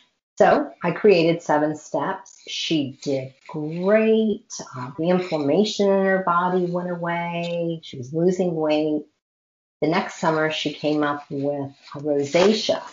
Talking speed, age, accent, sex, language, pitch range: 135 wpm, 40-59, American, female, English, 150-200 Hz